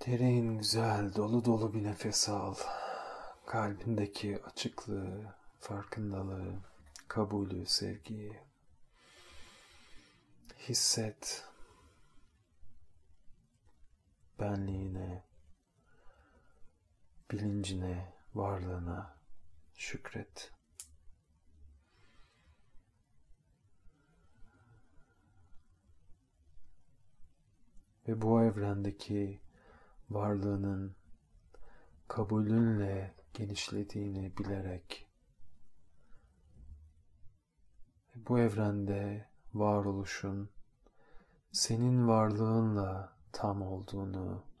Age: 40-59